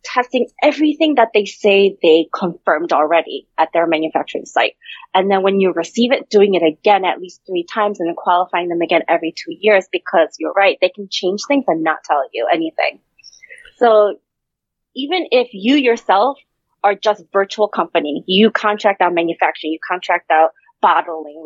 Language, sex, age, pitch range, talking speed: English, female, 30-49, 170-230 Hz, 170 wpm